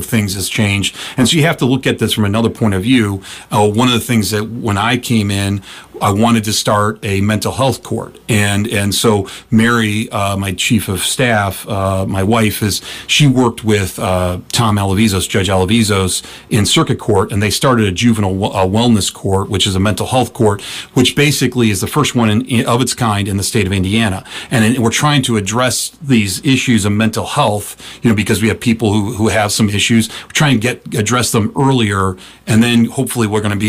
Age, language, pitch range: 40-59, English, 100-120 Hz